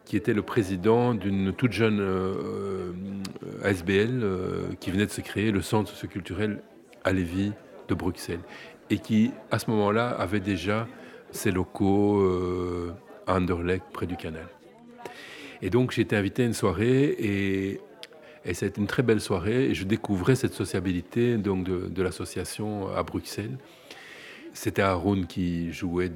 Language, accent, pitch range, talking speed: French, French, 90-110 Hz, 155 wpm